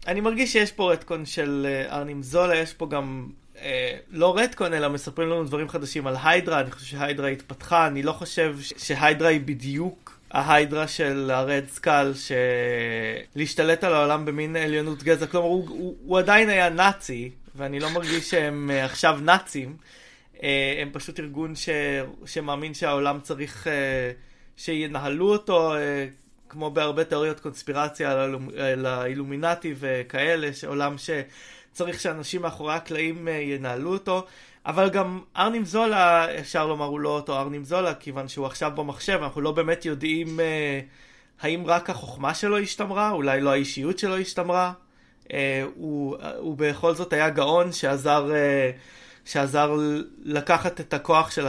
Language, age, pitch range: Hebrew, 20-39, 140-170 Hz